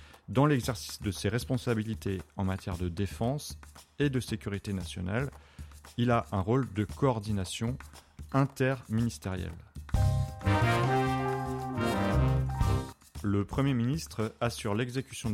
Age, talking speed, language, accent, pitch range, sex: 30-49, 100 wpm, French, French, 100-125 Hz, male